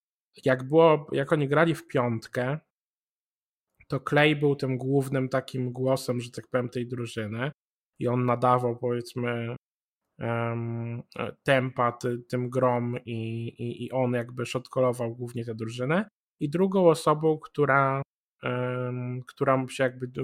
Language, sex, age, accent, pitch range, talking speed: Polish, male, 20-39, native, 125-140 Hz, 120 wpm